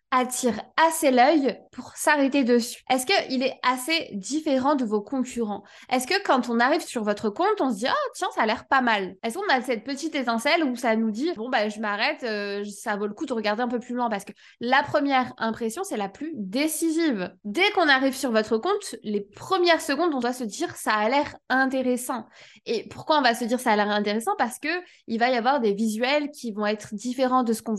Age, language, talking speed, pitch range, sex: 20-39, French, 240 wpm, 210-275 Hz, female